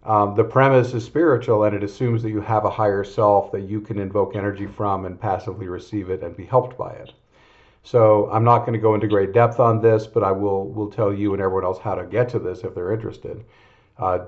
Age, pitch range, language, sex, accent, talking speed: 50-69, 100-115 Hz, English, male, American, 245 wpm